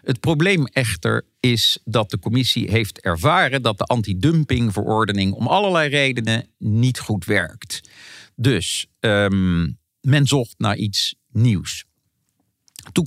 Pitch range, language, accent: 100-130 Hz, Dutch, Dutch